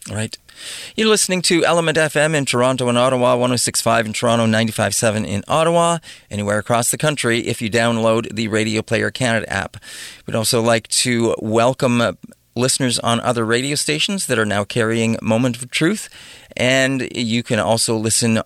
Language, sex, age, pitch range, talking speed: English, male, 40-59, 110-135 Hz, 165 wpm